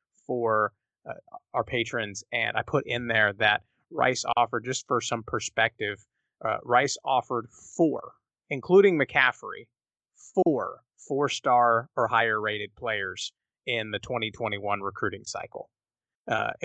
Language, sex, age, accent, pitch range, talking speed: English, male, 30-49, American, 110-130 Hz, 120 wpm